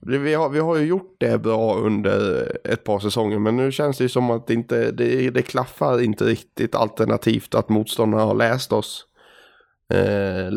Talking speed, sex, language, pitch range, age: 185 wpm, male, Swedish, 105-120 Hz, 20-39